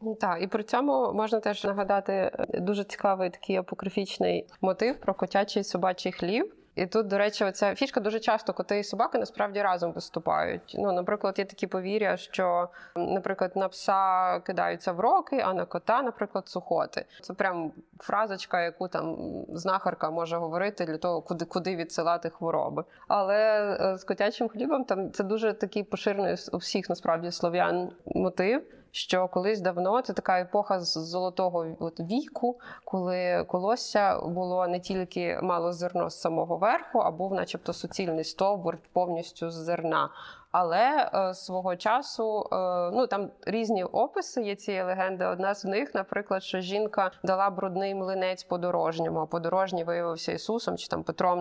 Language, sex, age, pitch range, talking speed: Ukrainian, female, 20-39, 180-205 Hz, 155 wpm